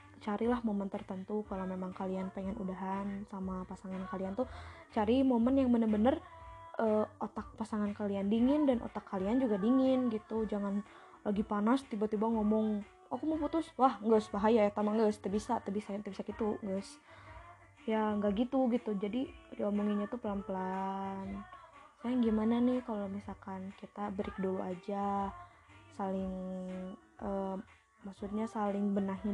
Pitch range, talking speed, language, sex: 195-230 Hz, 145 wpm, Indonesian, female